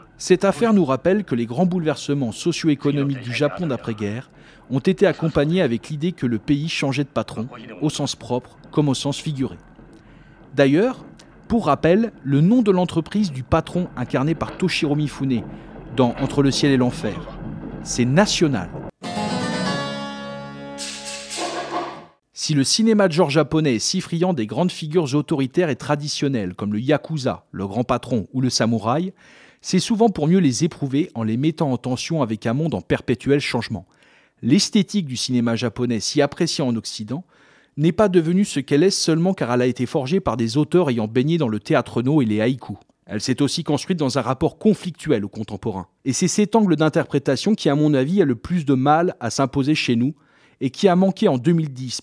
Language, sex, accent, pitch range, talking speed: French, male, French, 125-170 Hz, 180 wpm